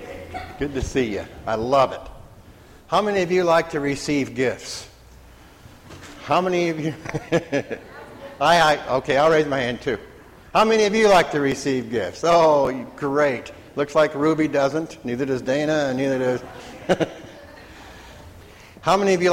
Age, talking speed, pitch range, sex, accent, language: 60-79, 160 wpm, 130-165 Hz, male, American, English